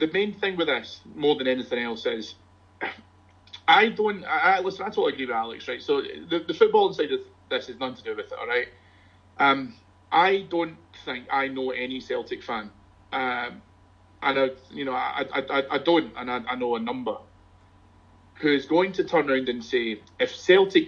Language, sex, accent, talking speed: English, male, British, 195 wpm